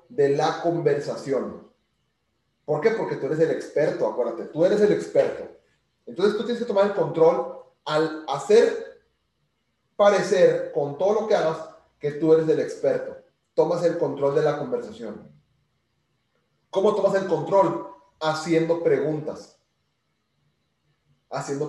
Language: Spanish